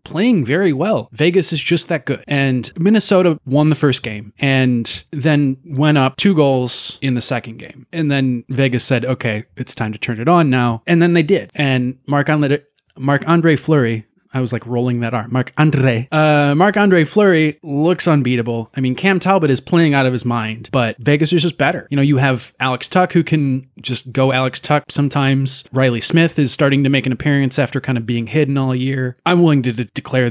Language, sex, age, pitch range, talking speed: English, male, 20-39, 120-155 Hz, 210 wpm